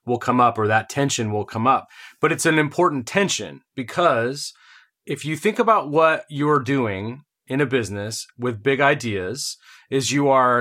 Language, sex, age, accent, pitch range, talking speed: English, male, 30-49, American, 125-155 Hz, 175 wpm